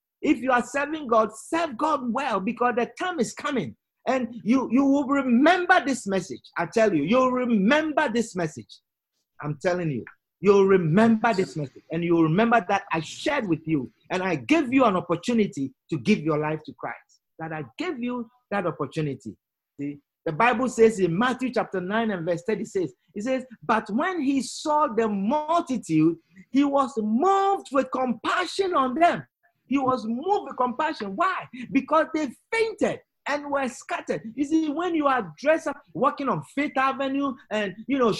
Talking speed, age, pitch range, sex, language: 180 wpm, 50-69, 190-280 Hz, male, English